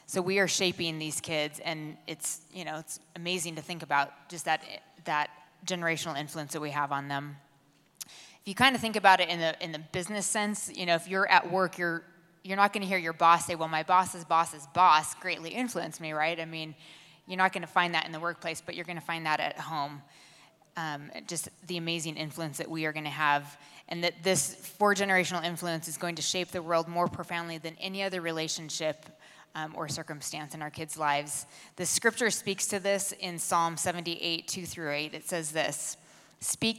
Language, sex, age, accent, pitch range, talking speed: English, female, 20-39, American, 155-180 Hz, 215 wpm